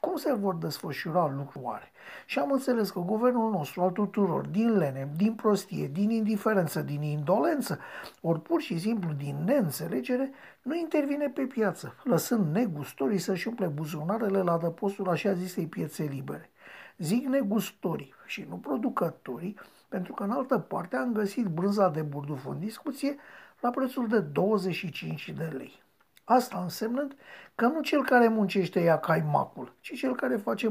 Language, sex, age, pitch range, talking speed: Romanian, male, 50-69, 160-230 Hz, 150 wpm